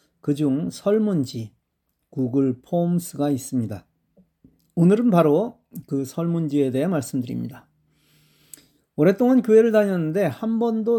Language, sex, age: Korean, male, 40-59